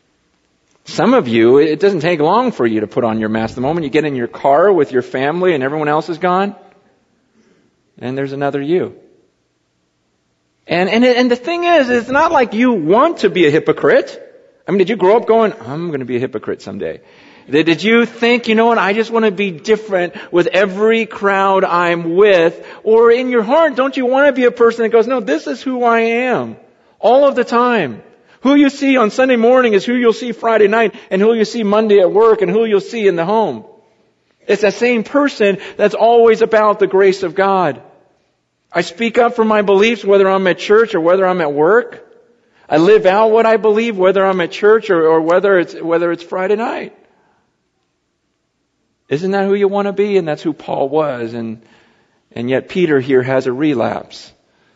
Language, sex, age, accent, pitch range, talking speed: English, male, 40-59, American, 165-230 Hz, 210 wpm